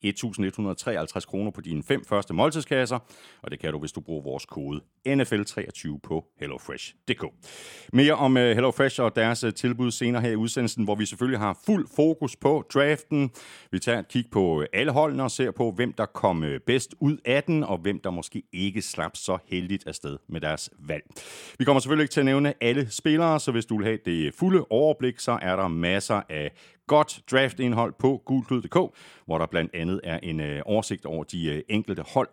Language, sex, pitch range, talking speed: Danish, male, 90-135 Hz, 190 wpm